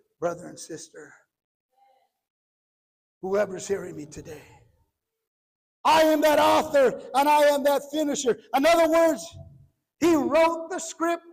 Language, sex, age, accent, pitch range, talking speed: English, male, 50-69, American, 295-385 Hz, 120 wpm